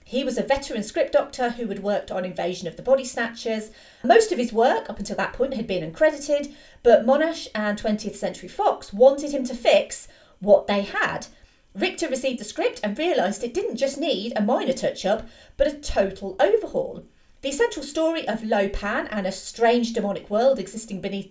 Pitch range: 205-285 Hz